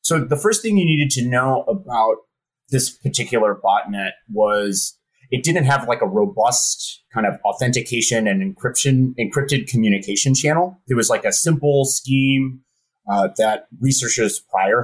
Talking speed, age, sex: 150 wpm, 30-49, male